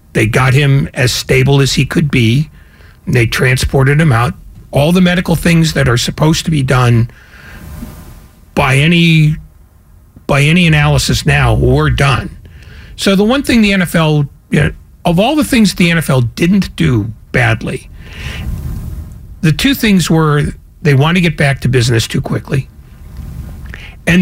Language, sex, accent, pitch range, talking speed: English, male, American, 120-175 Hz, 155 wpm